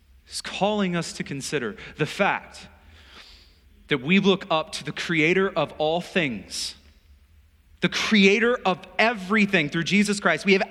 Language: English